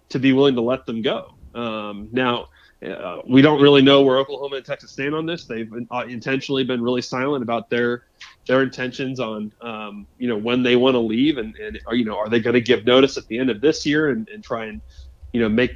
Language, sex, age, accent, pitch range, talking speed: English, male, 30-49, American, 115-135 Hz, 235 wpm